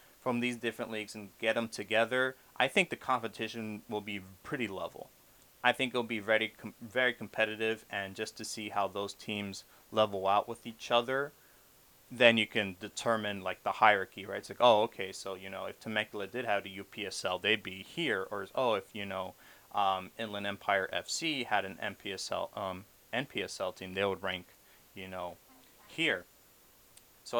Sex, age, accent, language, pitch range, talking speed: male, 30-49, American, English, 100-115 Hz, 175 wpm